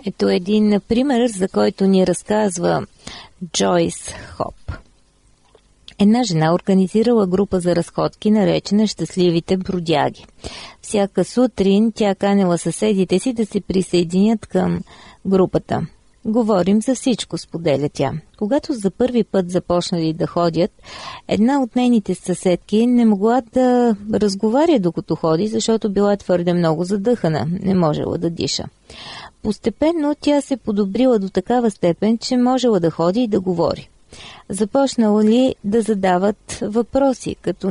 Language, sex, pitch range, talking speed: Bulgarian, female, 180-225 Hz, 125 wpm